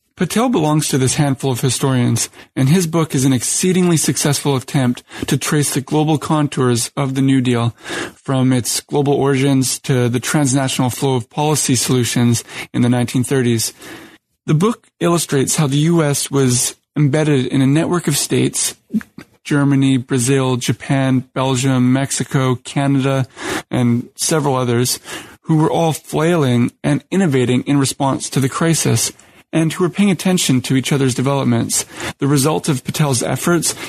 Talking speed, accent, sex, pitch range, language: 145 wpm, American, male, 130-150 Hz, English